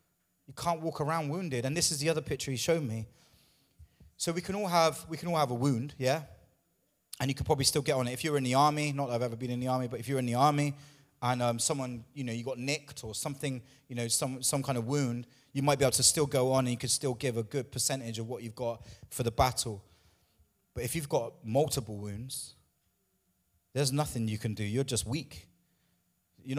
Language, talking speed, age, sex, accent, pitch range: English, 240 wpm, 20-39, male, British, 115-140 Hz